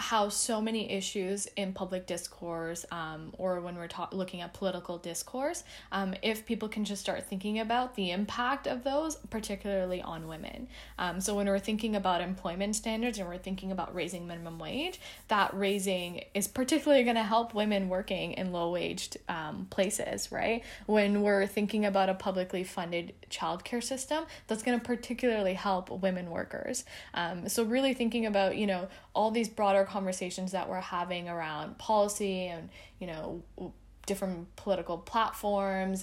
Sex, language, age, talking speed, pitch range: female, English, 10-29, 160 wpm, 180-225 Hz